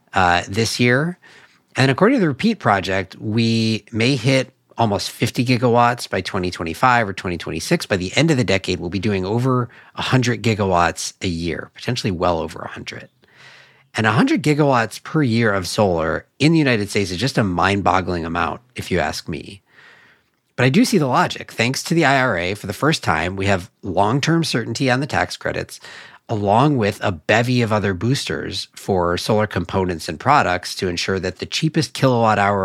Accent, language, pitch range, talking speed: American, English, 95-130 Hz, 185 wpm